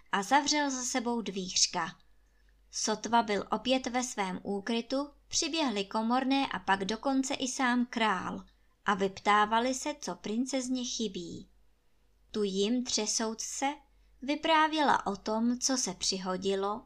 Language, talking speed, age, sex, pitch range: Czech, 120 wpm, 20-39, male, 195-255 Hz